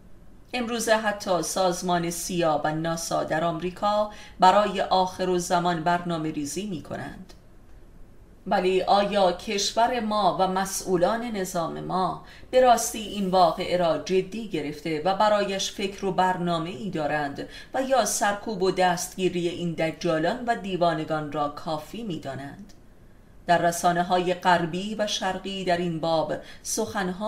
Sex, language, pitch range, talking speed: female, Persian, 165-200 Hz, 130 wpm